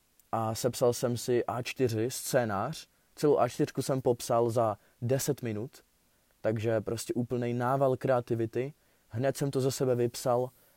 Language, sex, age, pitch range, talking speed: Czech, male, 20-39, 115-135 Hz, 135 wpm